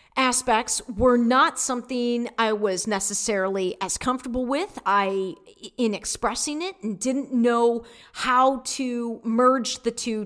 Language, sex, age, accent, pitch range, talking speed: English, female, 40-59, American, 210-260 Hz, 130 wpm